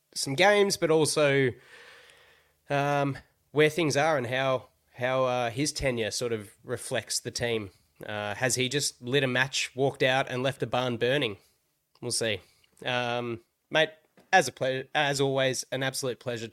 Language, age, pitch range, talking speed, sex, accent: English, 20-39, 120-140 Hz, 165 wpm, male, Australian